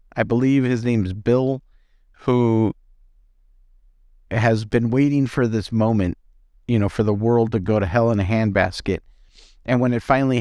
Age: 50-69